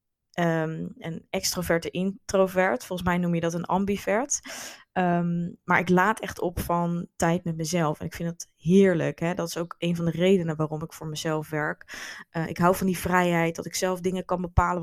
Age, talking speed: 20-39, 210 wpm